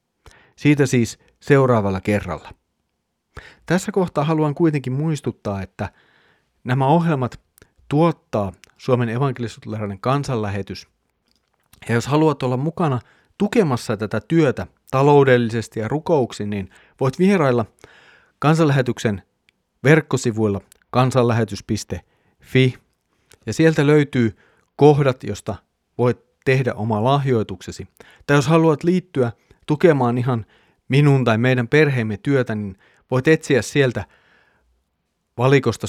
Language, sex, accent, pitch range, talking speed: Finnish, male, native, 105-140 Hz, 95 wpm